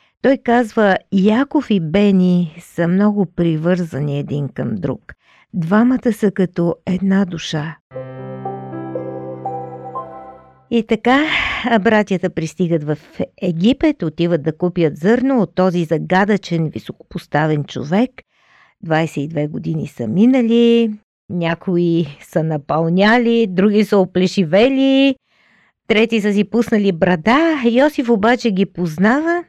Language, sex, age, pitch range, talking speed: Bulgarian, female, 50-69, 165-235 Hz, 100 wpm